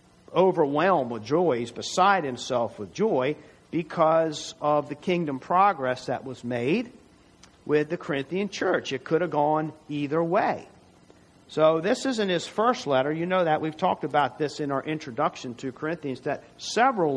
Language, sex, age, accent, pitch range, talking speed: English, male, 50-69, American, 130-165 Hz, 155 wpm